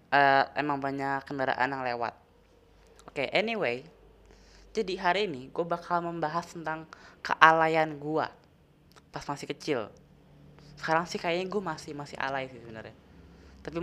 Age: 20-39